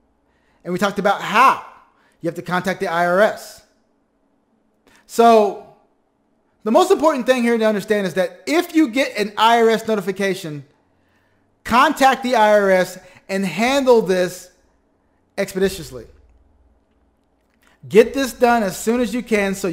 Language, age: English, 30-49